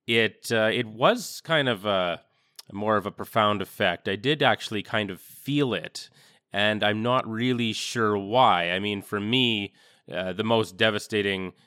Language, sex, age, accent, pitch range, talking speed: English, male, 20-39, American, 95-110 Hz, 165 wpm